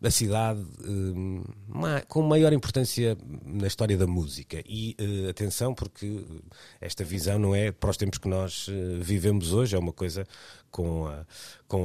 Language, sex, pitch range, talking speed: Portuguese, male, 90-115 Hz, 140 wpm